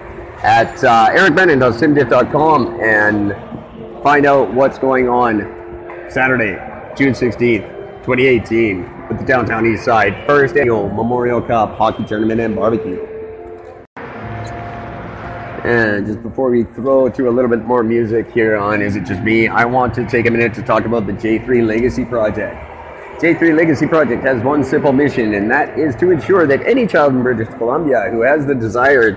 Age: 30-49